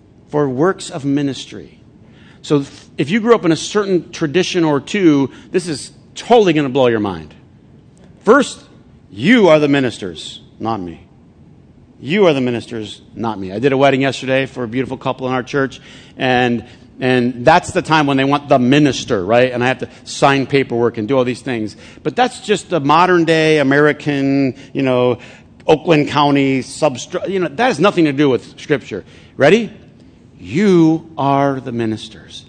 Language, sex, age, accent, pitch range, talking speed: English, male, 50-69, American, 125-155 Hz, 175 wpm